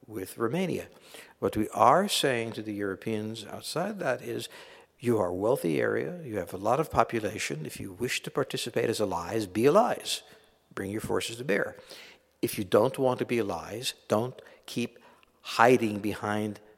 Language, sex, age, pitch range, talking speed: Hungarian, male, 60-79, 105-155 Hz, 170 wpm